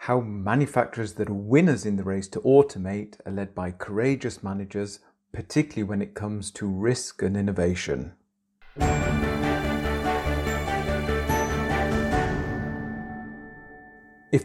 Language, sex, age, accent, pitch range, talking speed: English, male, 40-59, British, 95-115 Hz, 100 wpm